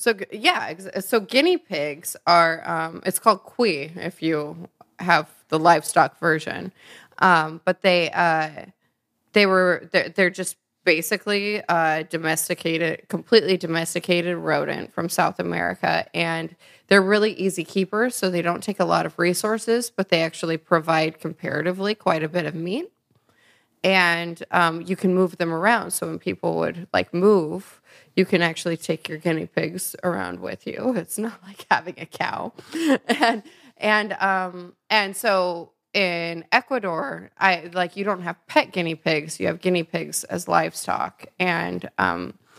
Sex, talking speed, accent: female, 150 wpm, American